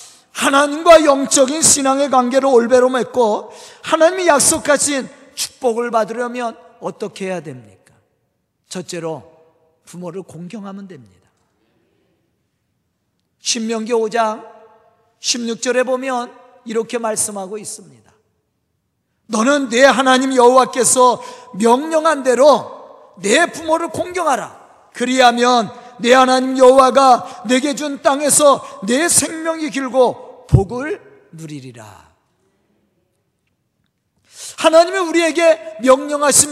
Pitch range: 220-280 Hz